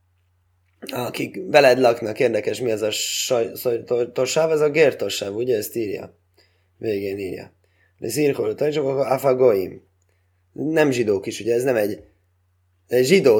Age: 20-39